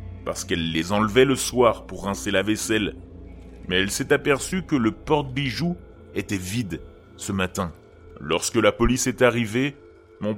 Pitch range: 100-145 Hz